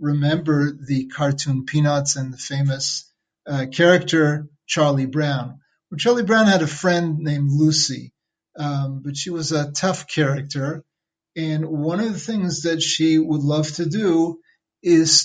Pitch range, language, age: 140-165 Hz, English, 30-49